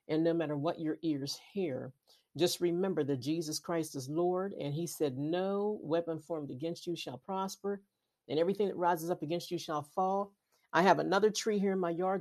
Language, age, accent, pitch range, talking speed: English, 50-69, American, 145-180 Hz, 200 wpm